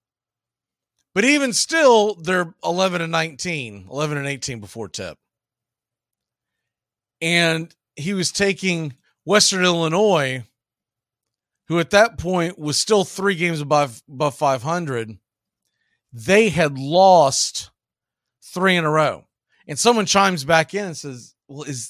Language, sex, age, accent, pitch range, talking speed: English, male, 40-59, American, 135-185 Hz, 125 wpm